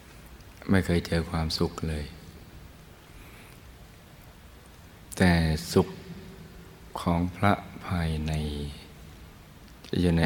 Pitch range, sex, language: 80-90 Hz, male, Thai